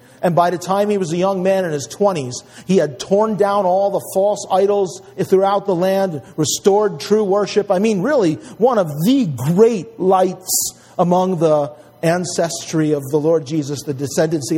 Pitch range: 145-190 Hz